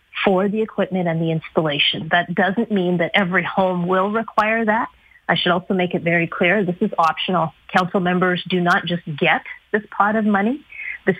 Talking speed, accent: 195 wpm, American